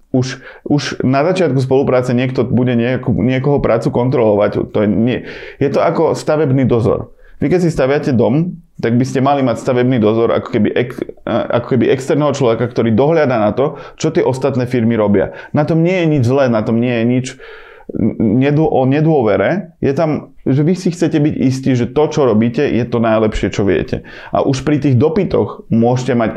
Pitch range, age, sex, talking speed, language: 120-150 Hz, 20-39, male, 190 wpm, Slovak